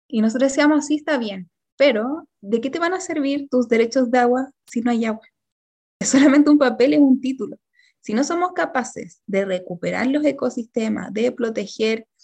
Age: 20-39